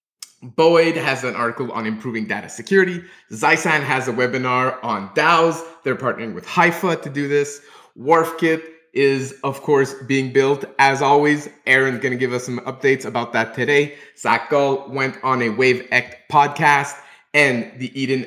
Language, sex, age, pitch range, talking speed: English, male, 30-49, 125-150 Hz, 165 wpm